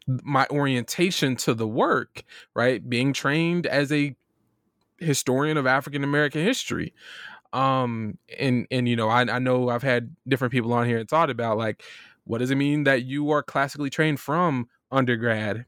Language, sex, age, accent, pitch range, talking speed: English, male, 20-39, American, 120-155 Hz, 170 wpm